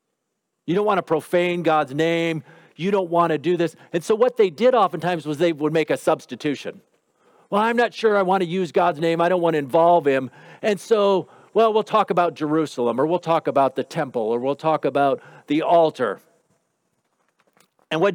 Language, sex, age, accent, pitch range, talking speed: English, male, 50-69, American, 145-200 Hz, 205 wpm